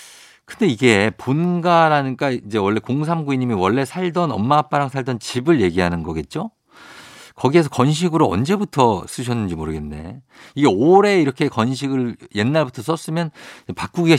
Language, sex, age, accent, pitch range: Korean, male, 50-69, native, 105-165 Hz